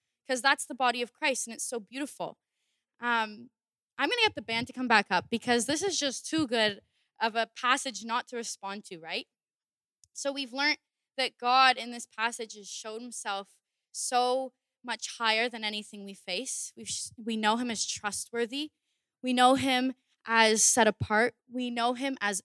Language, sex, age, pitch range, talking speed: English, female, 10-29, 200-250 Hz, 180 wpm